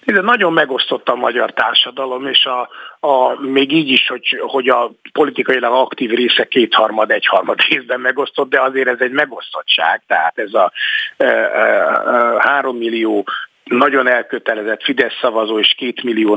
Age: 50-69